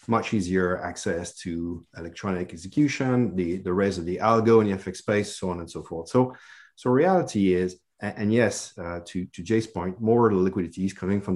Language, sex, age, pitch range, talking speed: English, male, 40-59, 90-115 Hz, 205 wpm